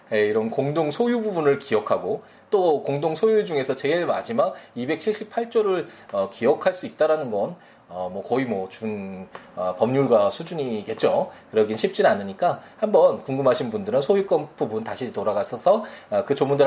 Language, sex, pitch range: Korean, male, 135-225 Hz